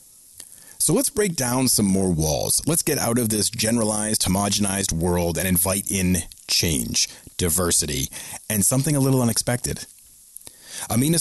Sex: male